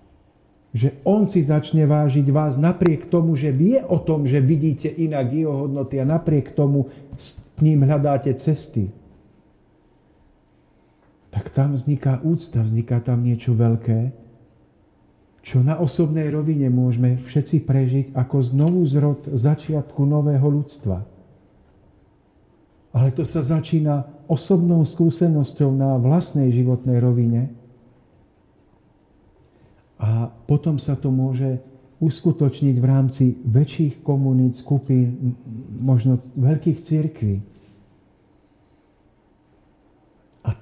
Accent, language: native, Czech